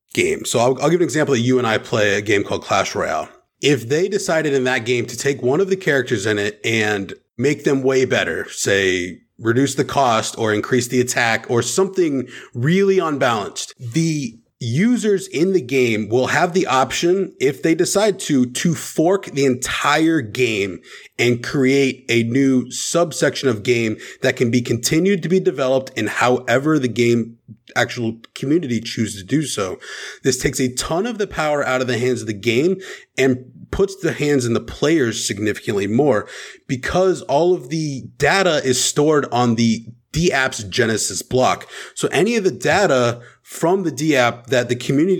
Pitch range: 120-160 Hz